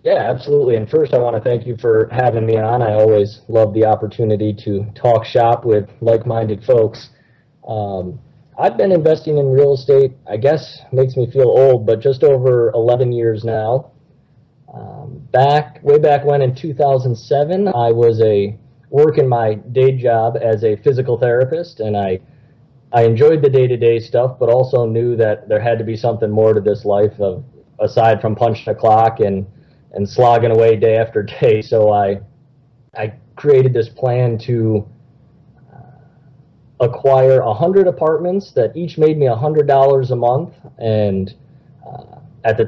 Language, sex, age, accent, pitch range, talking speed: English, male, 30-49, American, 115-140 Hz, 165 wpm